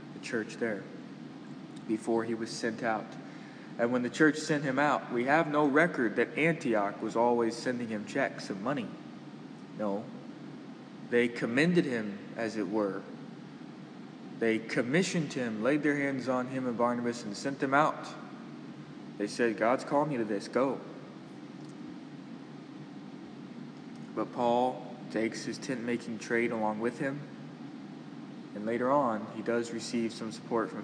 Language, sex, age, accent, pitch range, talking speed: English, male, 20-39, American, 115-145 Hz, 145 wpm